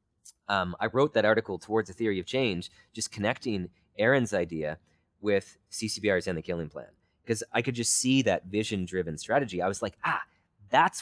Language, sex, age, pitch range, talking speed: English, male, 30-49, 90-115 Hz, 185 wpm